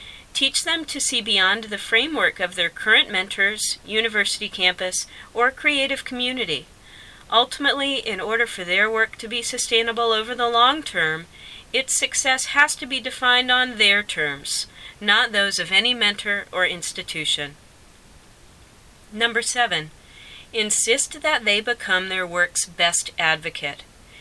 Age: 40-59